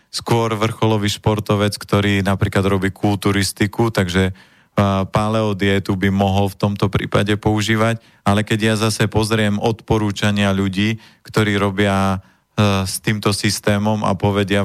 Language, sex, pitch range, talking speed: Slovak, male, 95-105 Hz, 125 wpm